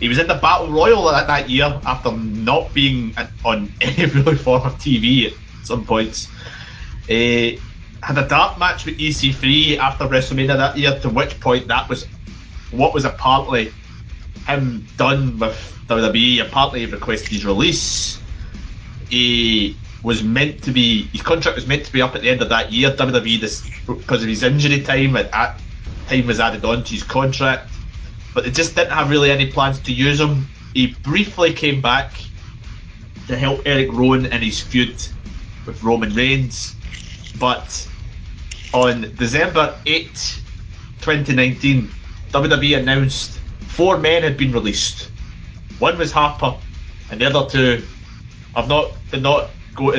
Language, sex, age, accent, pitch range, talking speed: English, male, 20-39, British, 105-135 Hz, 165 wpm